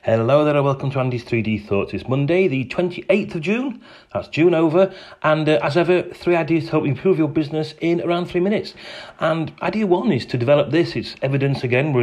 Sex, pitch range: male, 120-155 Hz